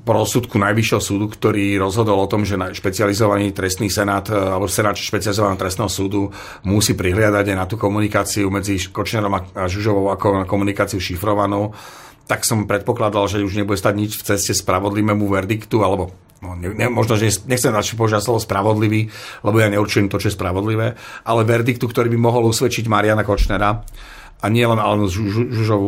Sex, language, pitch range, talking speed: male, Slovak, 100-115 Hz, 170 wpm